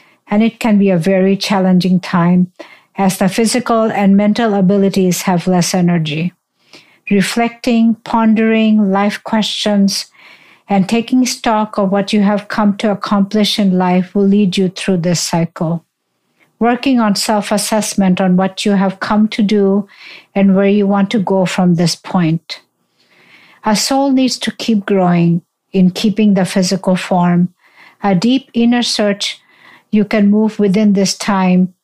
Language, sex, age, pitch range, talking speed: English, female, 60-79, 185-220 Hz, 150 wpm